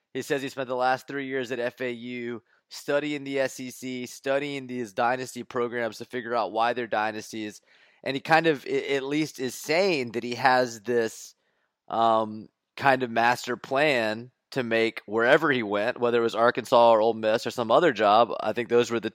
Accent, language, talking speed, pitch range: American, English, 190 wpm, 115-135 Hz